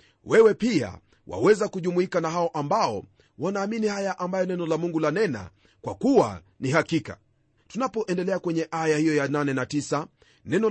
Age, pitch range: 40-59, 150-190 Hz